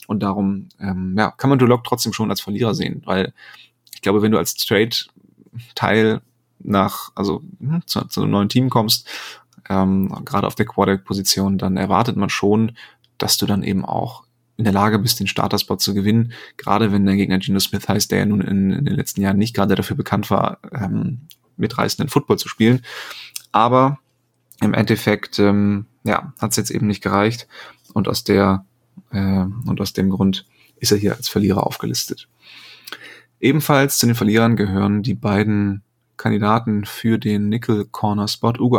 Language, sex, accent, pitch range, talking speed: German, male, German, 100-115 Hz, 180 wpm